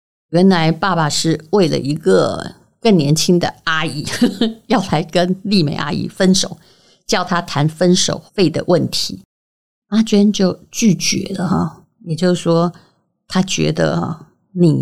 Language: Chinese